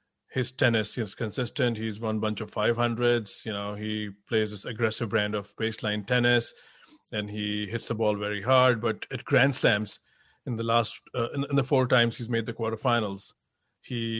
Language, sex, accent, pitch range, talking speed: English, male, Indian, 110-125 Hz, 190 wpm